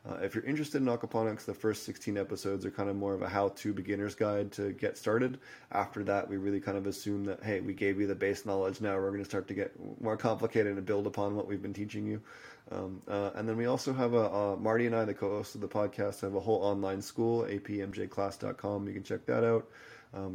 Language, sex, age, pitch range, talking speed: English, male, 20-39, 100-110 Hz, 250 wpm